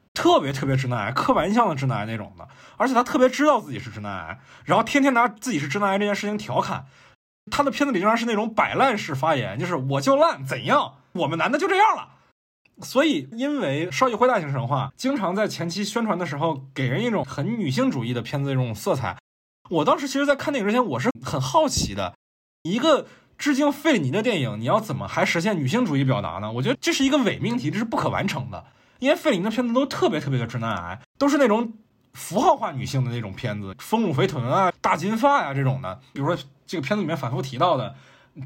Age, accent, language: 20-39, native, Chinese